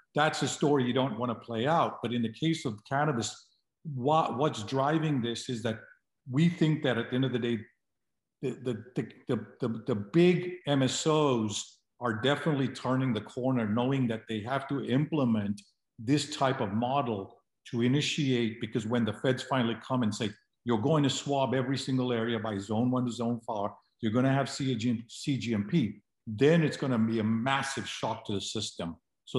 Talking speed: 180 wpm